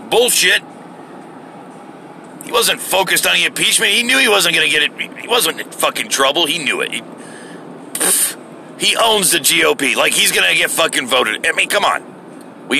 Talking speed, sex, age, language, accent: 190 wpm, male, 50-69, English, American